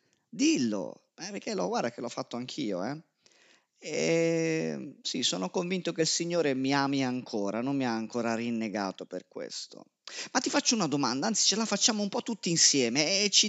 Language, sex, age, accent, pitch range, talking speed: Italian, male, 30-49, native, 125-185 Hz, 185 wpm